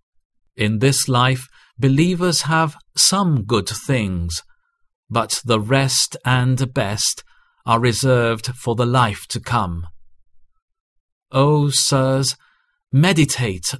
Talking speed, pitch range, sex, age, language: 100 wpm, 95-140 Hz, male, 50-69, English